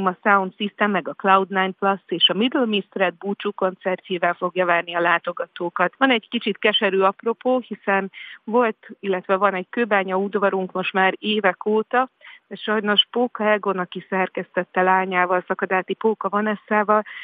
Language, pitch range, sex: Hungarian, 180-215 Hz, female